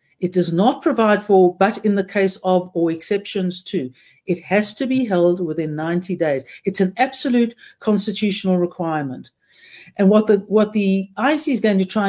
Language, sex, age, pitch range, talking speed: English, female, 60-79, 180-225 Hz, 180 wpm